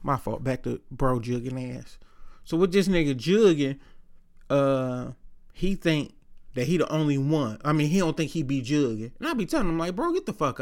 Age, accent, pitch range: 30-49, American, 140-180 Hz